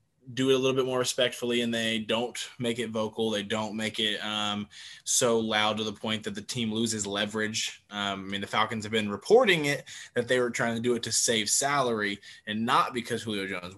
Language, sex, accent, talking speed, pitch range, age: English, male, American, 225 wpm, 105-125 Hz, 20-39